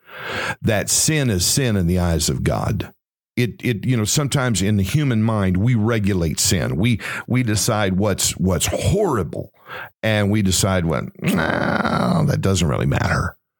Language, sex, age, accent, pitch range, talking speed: English, male, 50-69, American, 95-125 Hz, 160 wpm